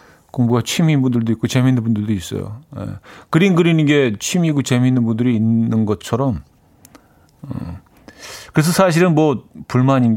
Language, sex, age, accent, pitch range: Korean, male, 40-59, native, 115-165 Hz